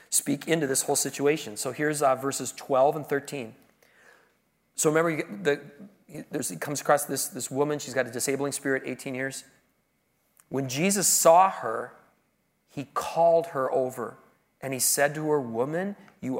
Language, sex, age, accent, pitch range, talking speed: English, male, 40-59, American, 125-165 Hz, 170 wpm